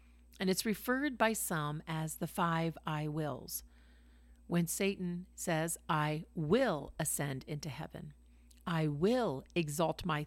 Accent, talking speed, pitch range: American, 130 wpm, 115-190 Hz